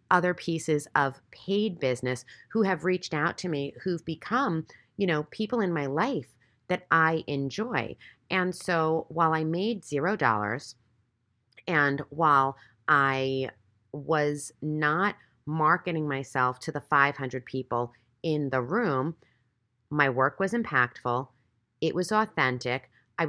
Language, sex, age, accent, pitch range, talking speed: English, female, 30-49, American, 130-170 Hz, 130 wpm